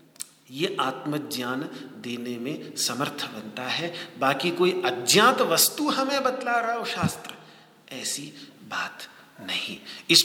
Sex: male